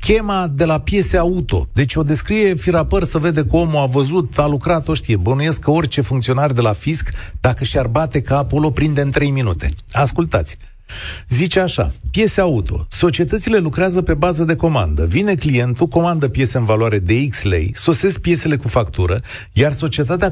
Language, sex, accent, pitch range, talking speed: Romanian, male, native, 120-170 Hz, 180 wpm